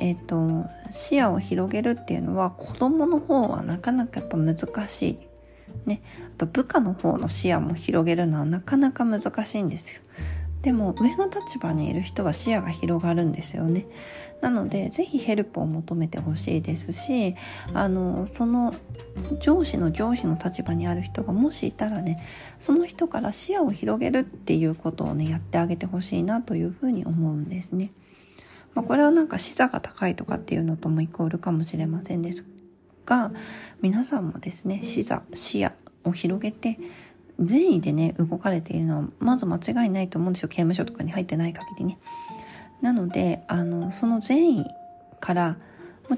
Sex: female